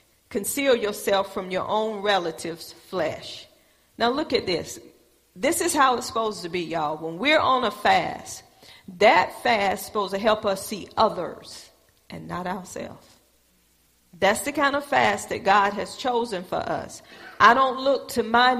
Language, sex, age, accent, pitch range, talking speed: English, female, 40-59, American, 195-260 Hz, 170 wpm